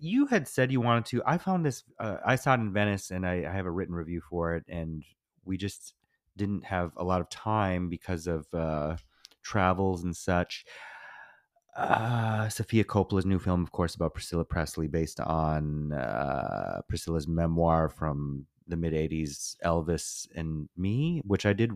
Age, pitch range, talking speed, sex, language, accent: 30-49, 85-105 Hz, 175 wpm, male, English, American